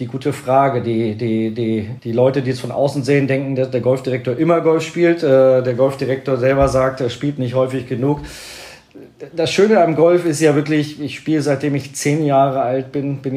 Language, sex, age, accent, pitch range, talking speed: German, male, 40-59, German, 110-130 Hz, 190 wpm